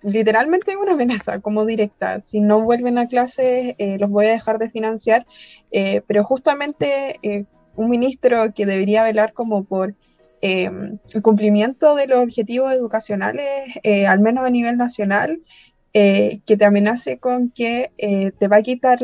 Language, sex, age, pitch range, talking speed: Spanish, female, 20-39, 210-260 Hz, 165 wpm